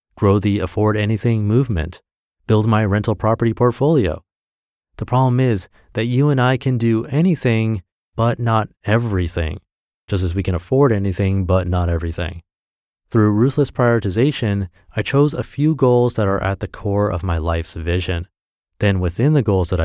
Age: 30-49